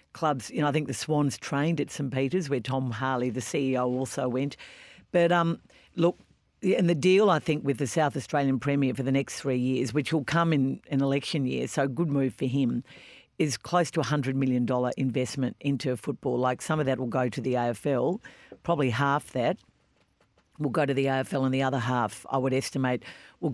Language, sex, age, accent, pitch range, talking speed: English, female, 50-69, Australian, 130-155 Hz, 210 wpm